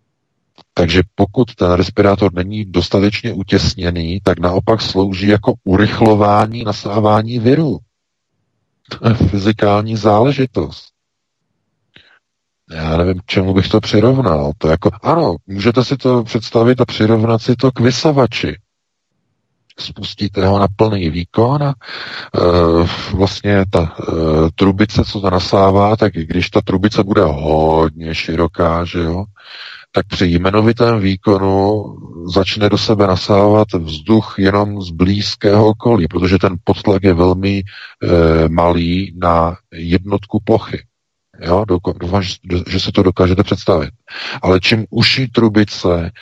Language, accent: Czech, native